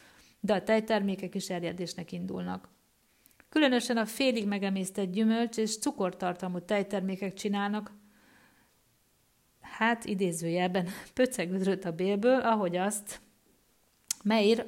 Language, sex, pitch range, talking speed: Hungarian, female, 180-230 Hz, 95 wpm